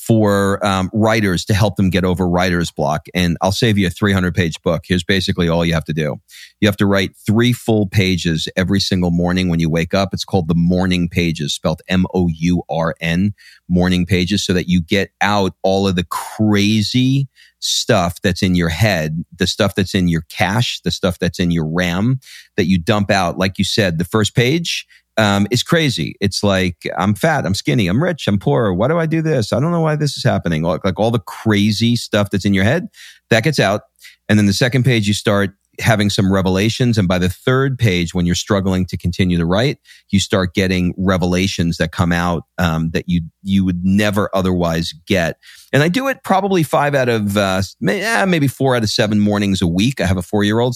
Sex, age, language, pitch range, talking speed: male, 40-59, English, 90-110 Hz, 210 wpm